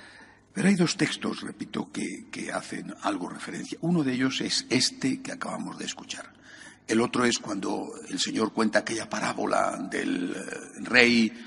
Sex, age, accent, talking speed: male, 60-79, Spanish, 155 wpm